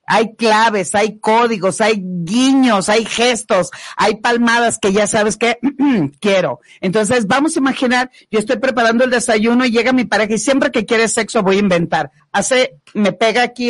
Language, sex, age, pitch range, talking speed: Spanish, female, 40-59, 190-245 Hz, 175 wpm